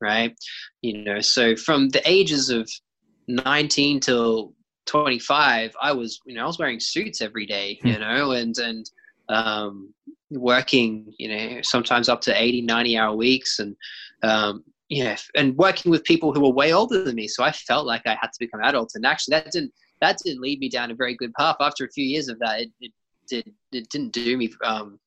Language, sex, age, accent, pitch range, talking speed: English, male, 20-39, Australian, 115-150 Hz, 210 wpm